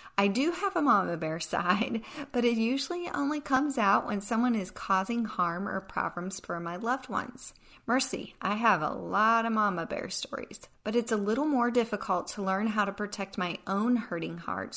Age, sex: 40-59, female